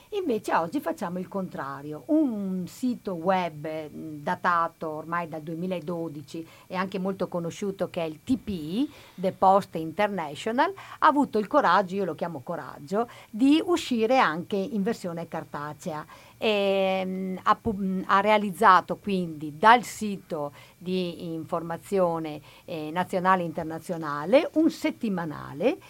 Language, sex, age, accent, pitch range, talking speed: Italian, female, 50-69, native, 170-205 Hz, 120 wpm